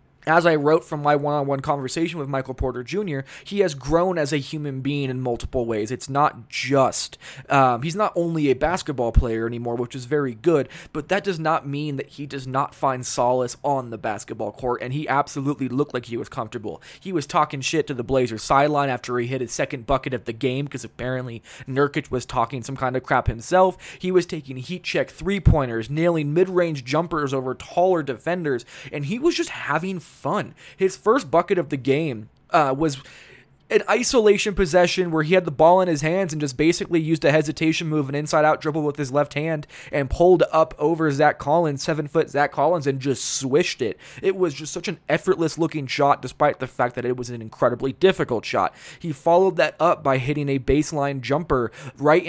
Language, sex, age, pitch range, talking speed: English, male, 20-39, 130-160 Hz, 205 wpm